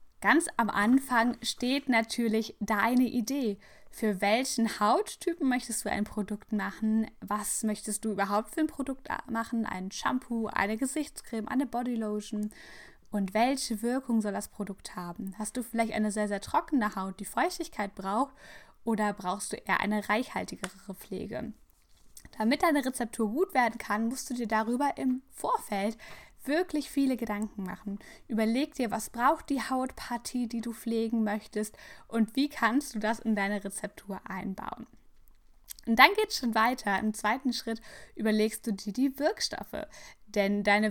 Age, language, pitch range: 10-29, German, 210-260 Hz